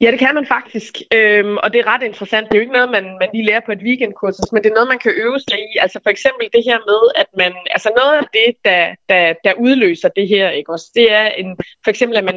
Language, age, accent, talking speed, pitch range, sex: Danish, 20-39, native, 285 wpm, 200-255 Hz, female